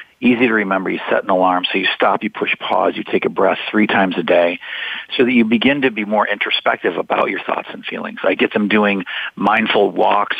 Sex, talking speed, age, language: male, 230 wpm, 40-59, English